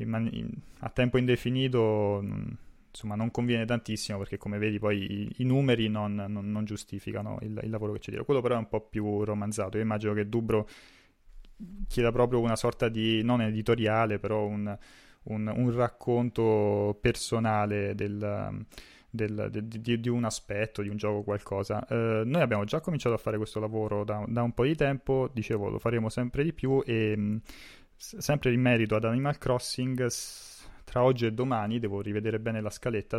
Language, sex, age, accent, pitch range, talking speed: Italian, male, 20-39, native, 105-120 Hz, 170 wpm